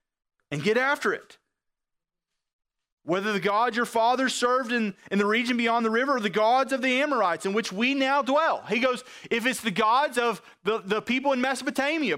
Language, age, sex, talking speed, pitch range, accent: English, 30-49, male, 195 wpm, 210-280 Hz, American